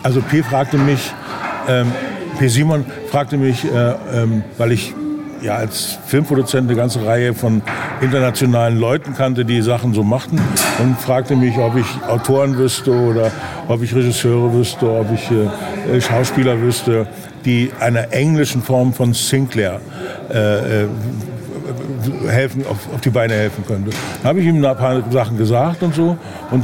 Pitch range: 120-140 Hz